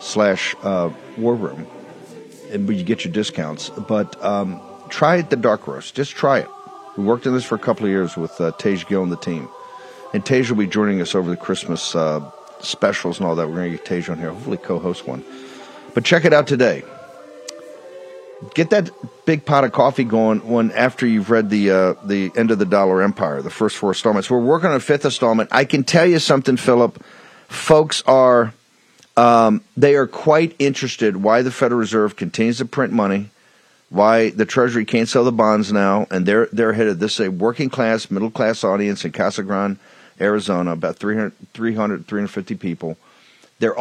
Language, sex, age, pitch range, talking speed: English, male, 50-69, 100-130 Hz, 200 wpm